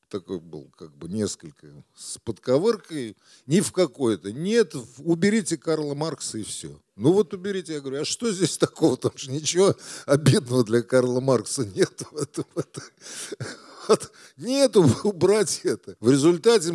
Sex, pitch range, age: male, 125-170 Hz, 50-69